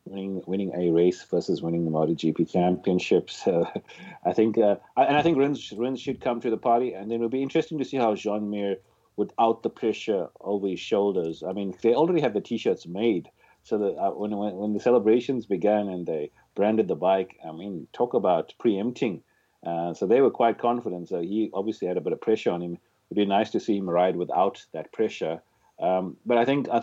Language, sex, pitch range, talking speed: English, male, 85-110 Hz, 215 wpm